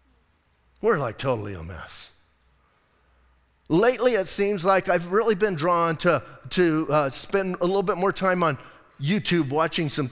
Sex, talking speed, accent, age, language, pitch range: male, 155 wpm, American, 40-59, English, 130-185 Hz